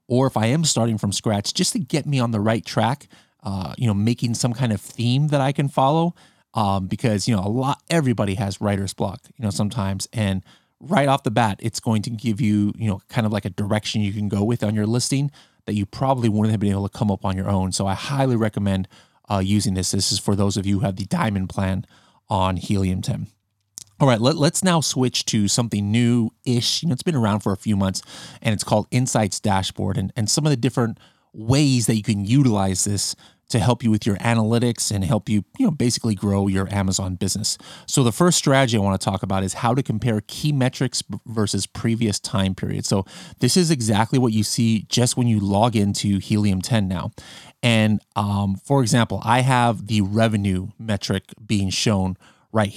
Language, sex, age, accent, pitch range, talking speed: English, male, 30-49, American, 100-125 Hz, 220 wpm